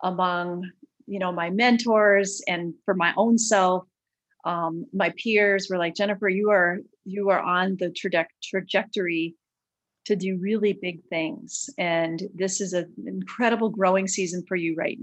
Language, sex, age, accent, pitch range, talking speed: English, female, 30-49, American, 180-220 Hz, 150 wpm